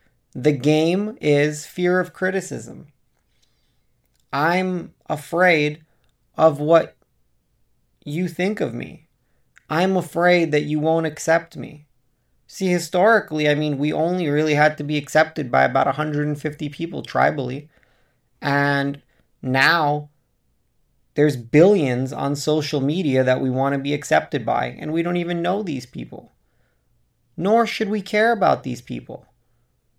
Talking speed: 130 wpm